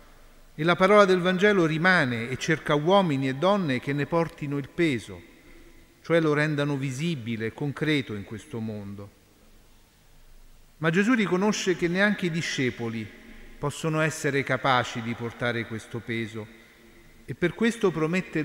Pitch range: 120-165 Hz